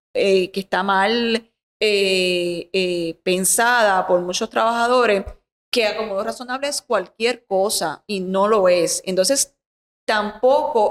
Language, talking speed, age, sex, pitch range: Spanish, 120 wpm, 30-49, female, 195-240 Hz